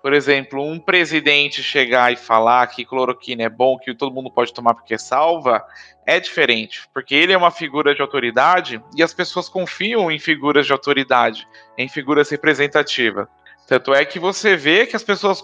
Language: Portuguese